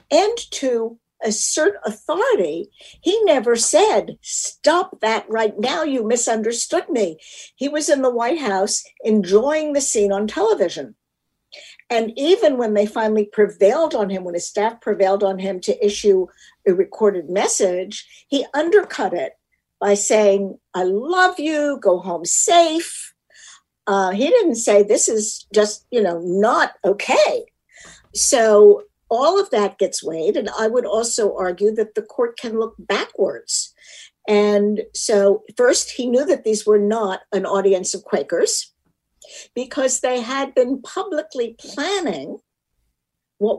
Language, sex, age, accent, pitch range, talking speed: English, female, 60-79, American, 200-290 Hz, 140 wpm